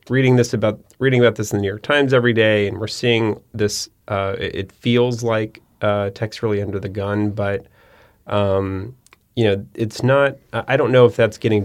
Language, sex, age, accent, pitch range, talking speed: English, male, 30-49, American, 95-110 Hz, 200 wpm